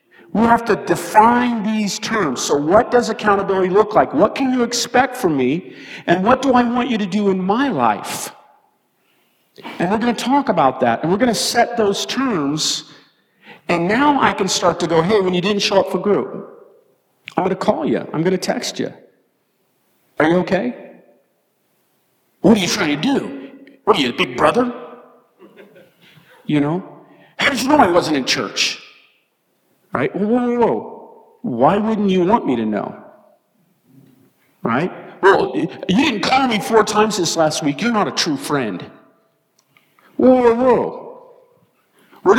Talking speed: 170 wpm